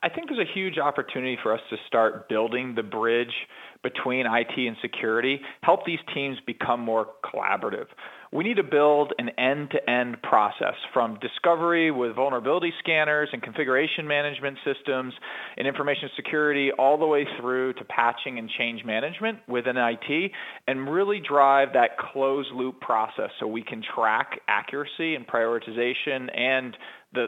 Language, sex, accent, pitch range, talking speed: English, male, American, 120-150 Hz, 150 wpm